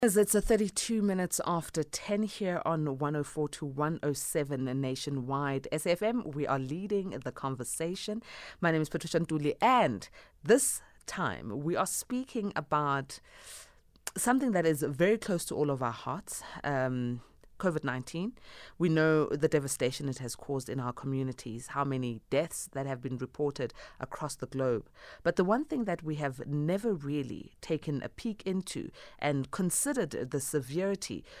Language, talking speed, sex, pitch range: English, 160 wpm, female, 130-170 Hz